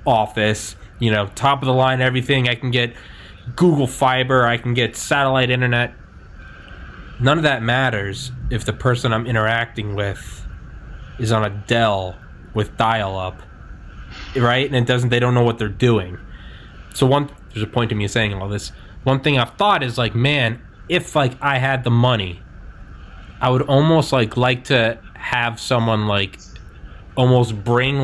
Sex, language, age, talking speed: male, English, 20-39, 165 wpm